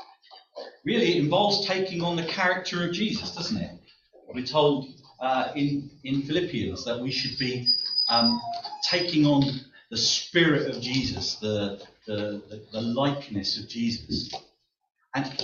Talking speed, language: 140 wpm, English